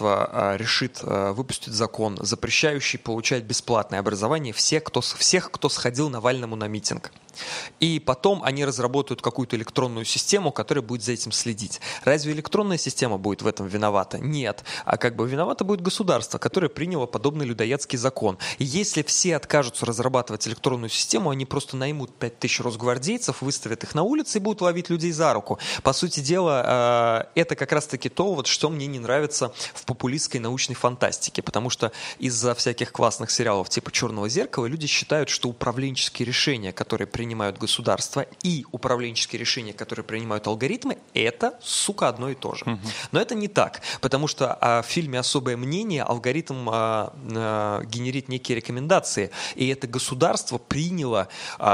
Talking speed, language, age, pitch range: 155 wpm, Russian, 20-39, 115-150 Hz